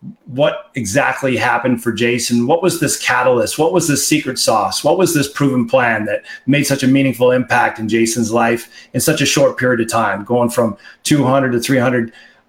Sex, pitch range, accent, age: male, 120-145 Hz, American, 40-59